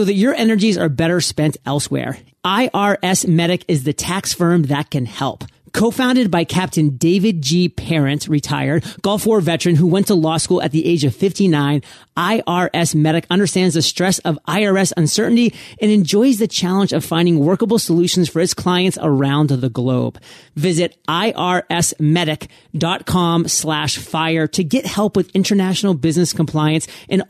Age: 30-49